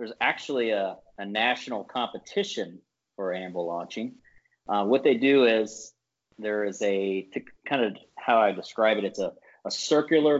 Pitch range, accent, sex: 100-125 Hz, American, male